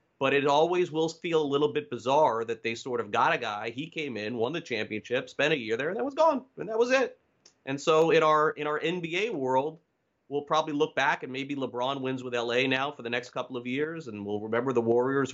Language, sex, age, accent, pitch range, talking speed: English, male, 30-49, American, 120-160 Hz, 245 wpm